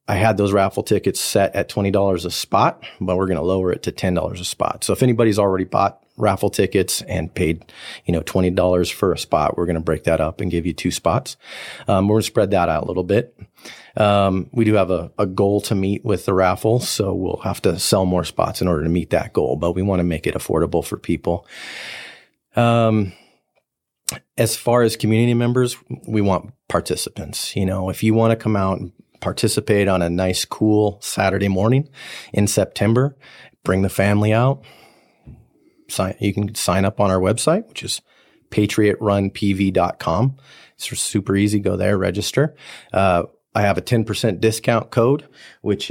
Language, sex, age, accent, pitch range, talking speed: English, male, 30-49, American, 95-110 Hz, 185 wpm